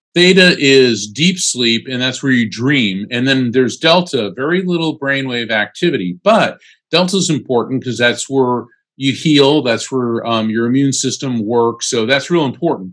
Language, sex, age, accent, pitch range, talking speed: English, male, 50-69, American, 115-145 Hz, 170 wpm